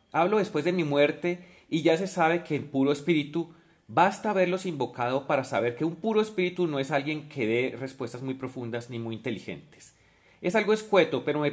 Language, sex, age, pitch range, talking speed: Spanish, male, 30-49, 135-170 Hz, 200 wpm